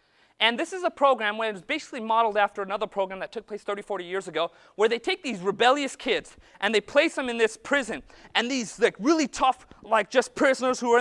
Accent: American